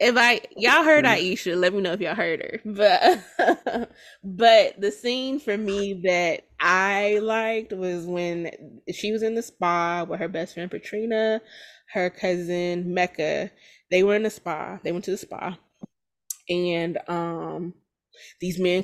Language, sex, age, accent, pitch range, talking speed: English, female, 20-39, American, 175-210 Hz, 160 wpm